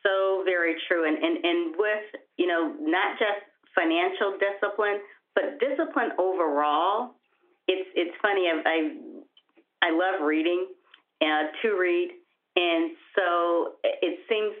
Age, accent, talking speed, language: 40-59, American, 125 wpm, English